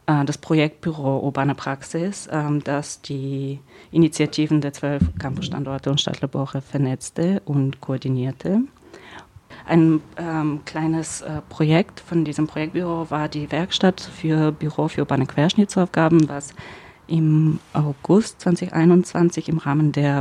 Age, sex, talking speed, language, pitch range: 30-49, female, 115 wpm, German, 145-165 Hz